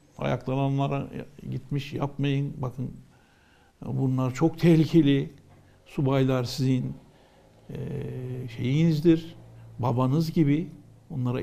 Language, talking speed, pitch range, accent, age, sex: Turkish, 75 wpm, 130-165 Hz, native, 60-79, male